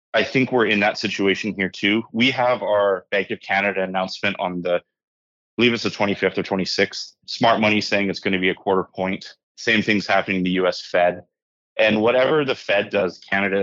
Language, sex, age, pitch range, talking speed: English, male, 30-49, 90-105 Hz, 205 wpm